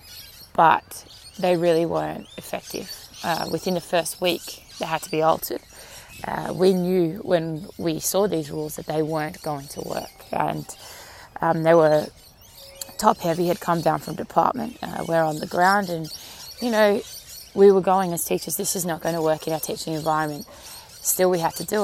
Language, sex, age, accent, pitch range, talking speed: English, female, 20-39, Australian, 155-180 Hz, 190 wpm